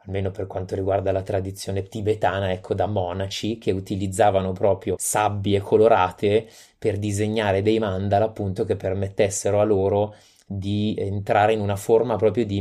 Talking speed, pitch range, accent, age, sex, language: 150 wpm, 95-105 Hz, native, 20-39, male, Italian